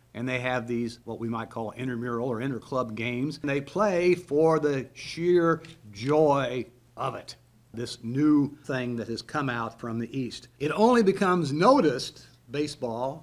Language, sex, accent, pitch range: English, male, American, 120-160 Hz